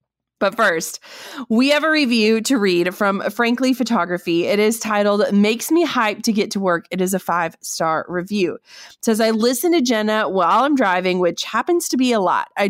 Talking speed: 200 wpm